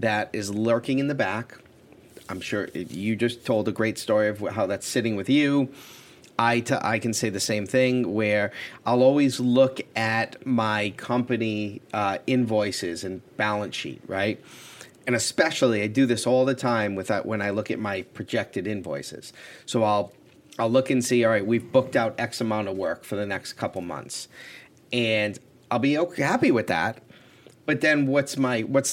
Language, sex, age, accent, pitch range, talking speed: English, male, 30-49, American, 105-130 Hz, 185 wpm